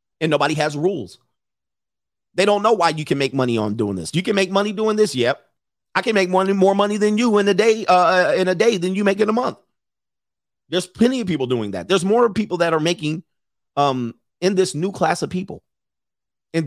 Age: 40-59